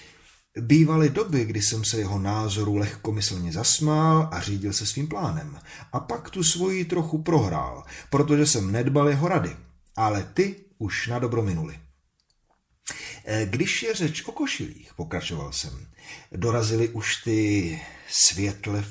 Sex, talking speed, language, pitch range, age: male, 135 wpm, Czech, 105-160 Hz, 40-59